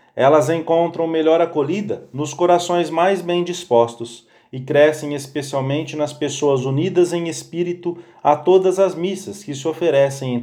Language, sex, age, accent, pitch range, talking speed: English, male, 40-59, Brazilian, 145-175 Hz, 145 wpm